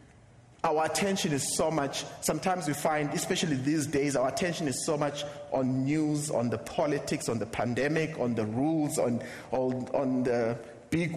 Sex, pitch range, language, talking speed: male, 125-175 Hz, English, 170 wpm